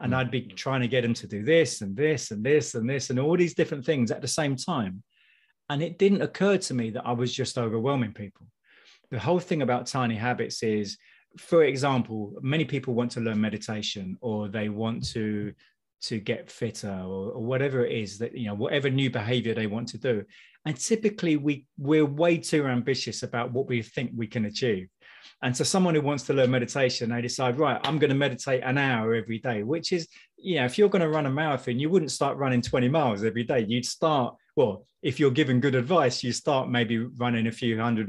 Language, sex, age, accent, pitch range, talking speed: English, male, 30-49, British, 115-145 Hz, 220 wpm